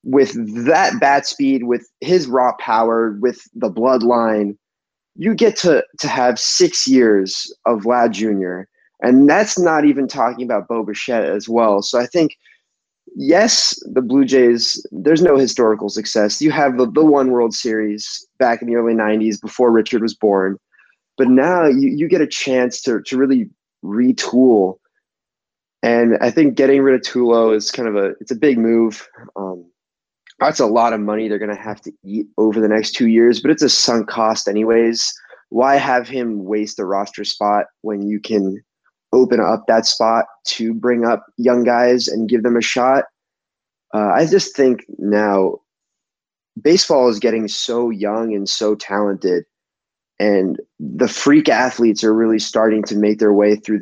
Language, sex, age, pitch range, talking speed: English, male, 20-39, 105-130 Hz, 170 wpm